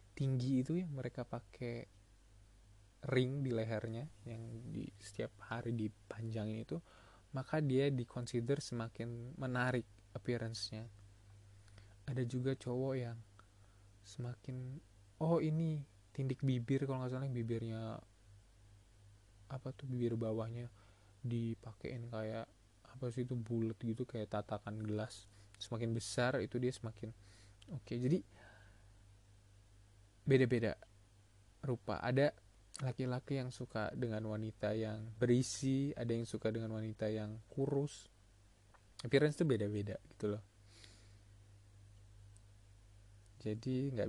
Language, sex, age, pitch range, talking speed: Indonesian, male, 20-39, 100-125 Hz, 110 wpm